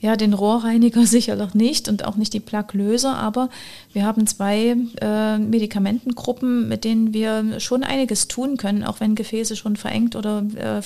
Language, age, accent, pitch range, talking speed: German, 40-59, German, 210-230 Hz, 165 wpm